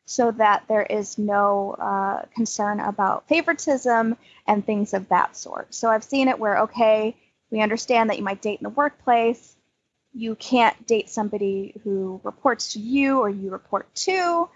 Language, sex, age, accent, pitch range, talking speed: English, female, 20-39, American, 200-260 Hz, 170 wpm